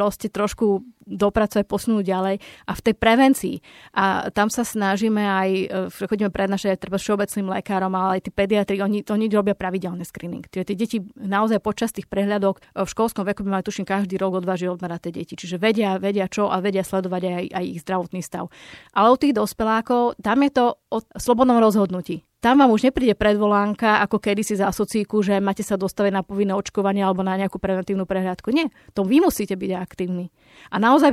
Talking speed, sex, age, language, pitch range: 190 wpm, female, 30-49, Slovak, 190-220 Hz